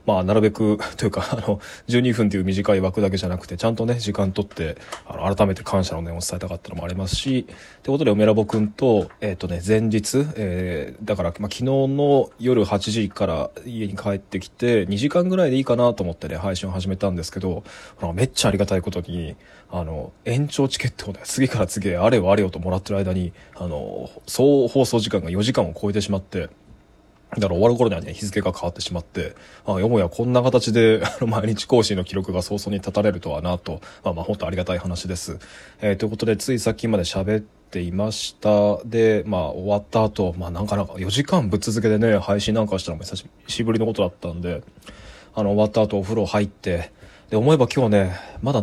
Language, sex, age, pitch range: Japanese, male, 20-39, 95-110 Hz